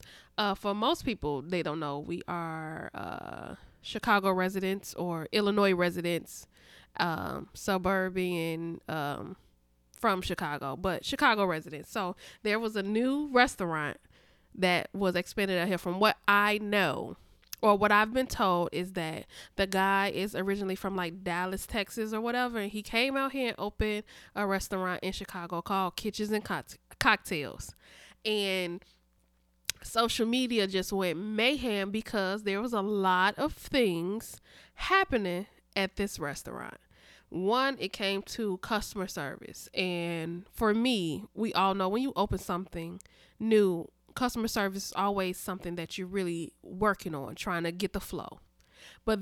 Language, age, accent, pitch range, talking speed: English, 20-39, American, 175-210 Hz, 150 wpm